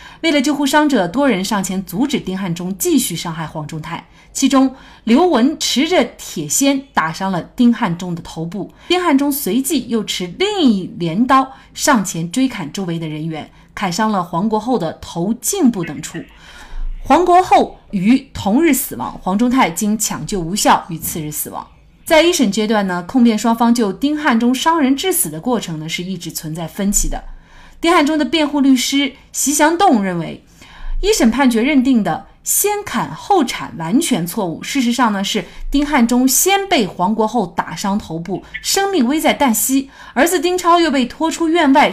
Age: 30-49